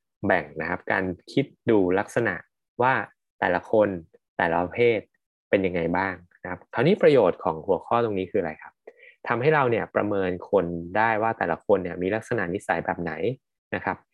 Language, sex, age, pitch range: Thai, male, 20-39, 100-140 Hz